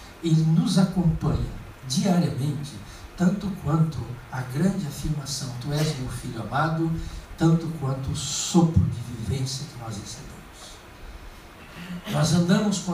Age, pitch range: 60-79, 125-155 Hz